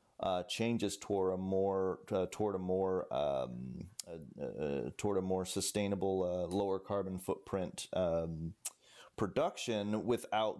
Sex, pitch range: male, 95-115 Hz